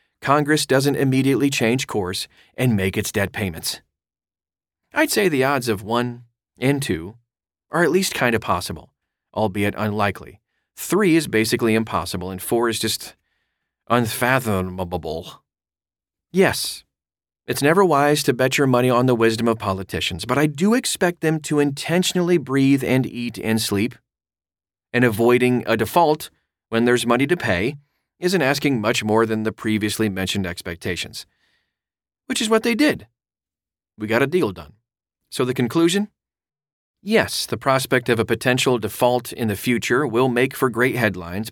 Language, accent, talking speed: English, American, 155 wpm